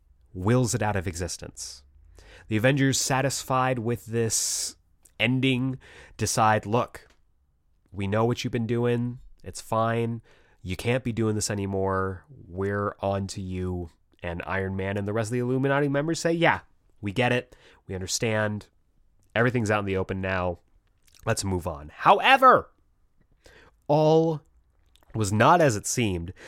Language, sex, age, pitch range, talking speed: English, male, 30-49, 90-120 Hz, 145 wpm